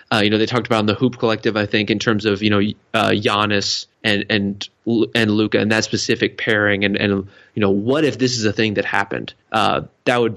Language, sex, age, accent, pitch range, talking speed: English, male, 20-39, American, 110-125 Hz, 245 wpm